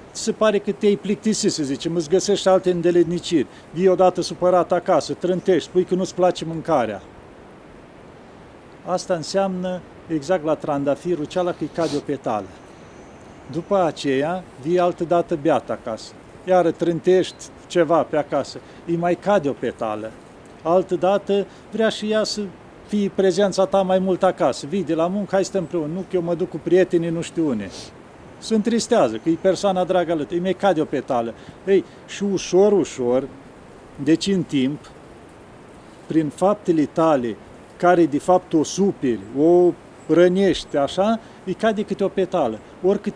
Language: Romanian